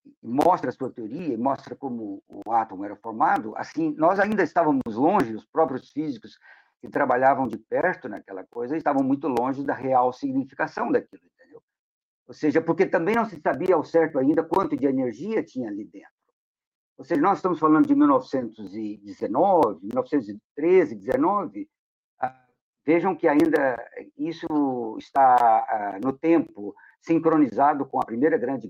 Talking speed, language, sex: 145 wpm, Portuguese, male